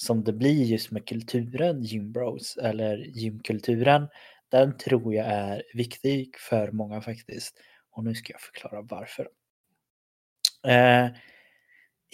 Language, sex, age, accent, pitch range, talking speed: Swedish, male, 20-39, native, 105-125 Hz, 120 wpm